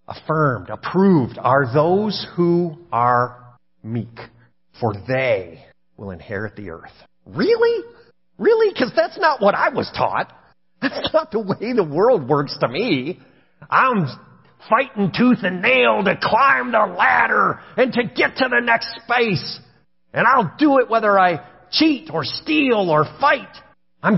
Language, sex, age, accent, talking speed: English, male, 40-59, American, 145 wpm